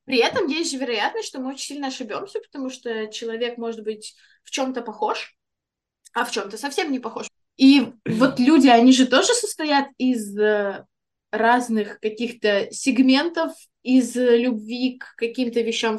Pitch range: 230-290 Hz